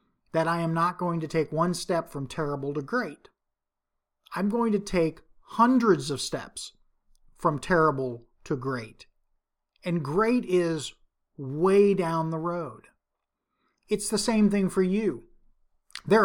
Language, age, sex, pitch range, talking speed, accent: English, 40-59, male, 150-195 Hz, 140 wpm, American